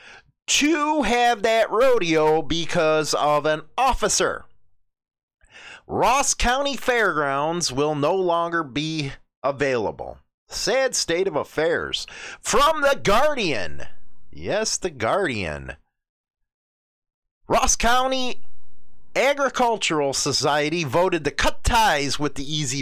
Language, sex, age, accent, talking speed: English, male, 30-49, American, 95 wpm